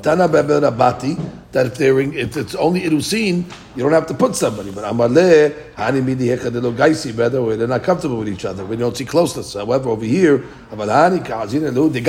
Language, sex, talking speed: English, male, 140 wpm